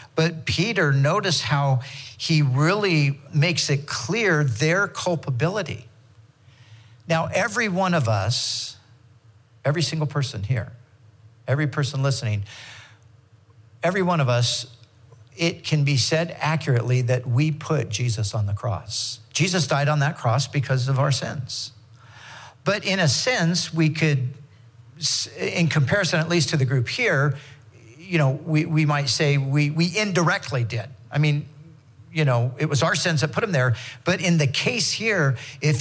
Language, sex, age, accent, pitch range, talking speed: English, male, 50-69, American, 120-160 Hz, 150 wpm